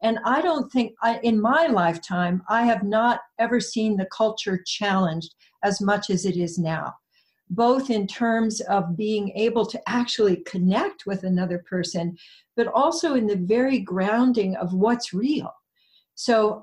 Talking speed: 160 wpm